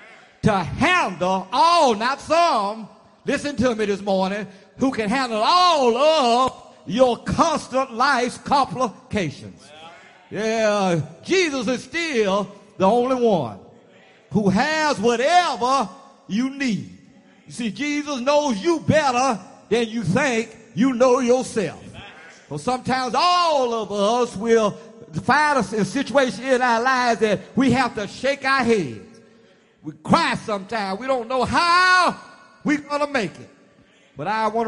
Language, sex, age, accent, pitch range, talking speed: English, male, 50-69, American, 215-275 Hz, 135 wpm